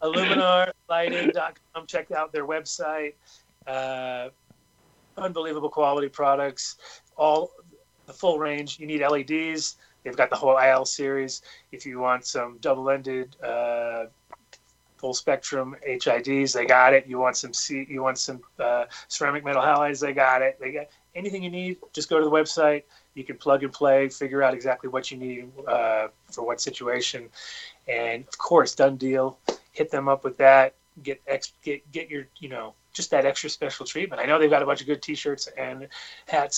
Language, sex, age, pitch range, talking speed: English, male, 30-49, 130-150 Hz, 170 wpm